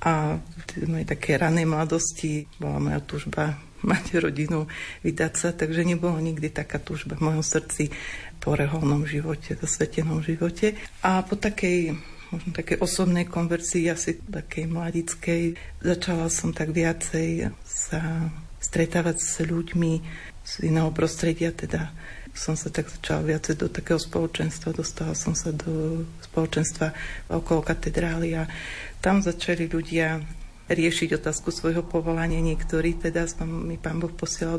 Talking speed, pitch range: 130 wpm, 160-170 Hz